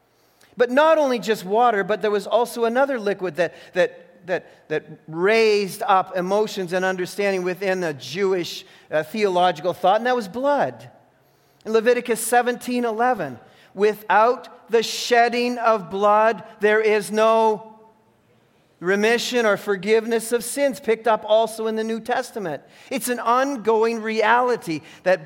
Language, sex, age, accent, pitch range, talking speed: English, male, 40-59, American, 195-240 Hz, 140 wpm